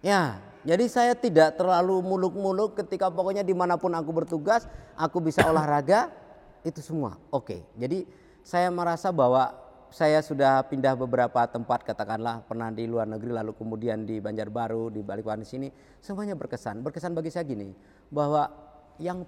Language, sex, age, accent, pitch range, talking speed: Indonesian, male, 40-59, native, 110-165 Hz, 150 wpm